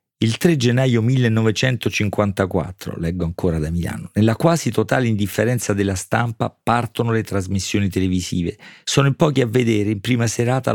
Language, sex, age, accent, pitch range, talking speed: Italian, male, 40-59, native, 100-120 Hz, 145 wpm